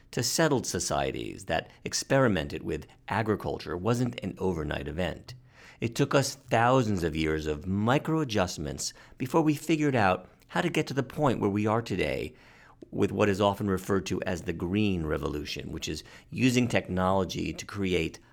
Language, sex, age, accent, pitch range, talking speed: English, male, 50-69, American, 90-130 Hz, 160 wpm